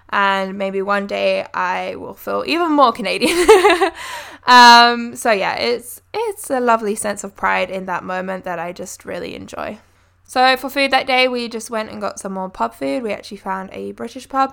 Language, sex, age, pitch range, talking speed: English, female, 10-29, 195-240 Hz, 200 wpm